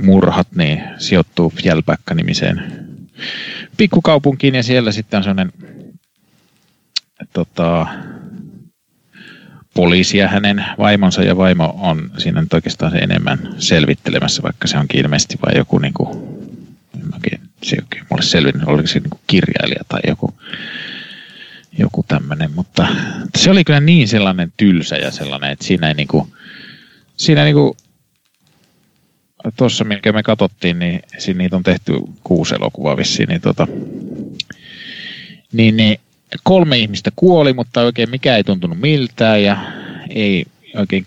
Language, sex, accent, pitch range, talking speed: Finnish, male, native, 95-150 Hz, 115 wpm